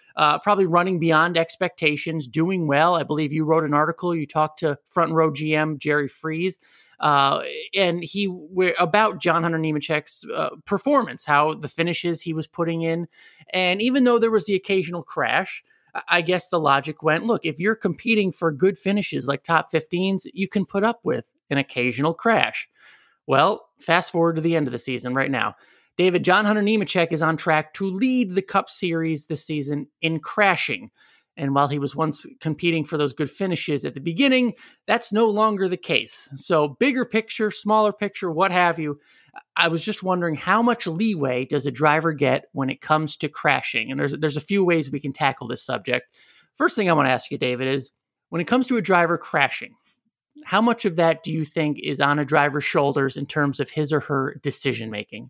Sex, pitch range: male, 150-195 Hz